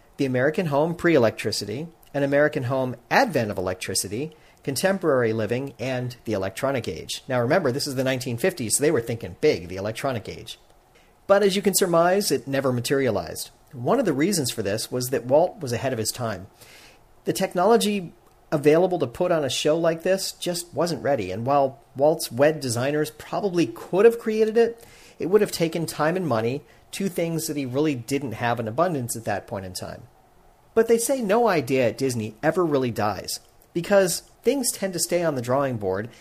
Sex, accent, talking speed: male, American, 190 wpm